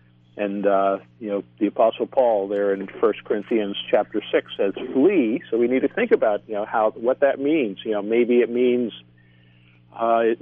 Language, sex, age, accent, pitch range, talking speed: English, male, 50-69, American, 90-120 Hz, 195 wpm